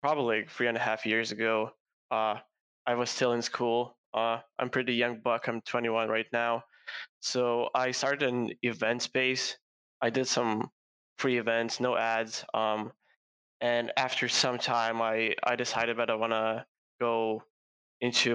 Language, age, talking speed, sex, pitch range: English, 20-39, 160 wpm, male, 115-120 Hz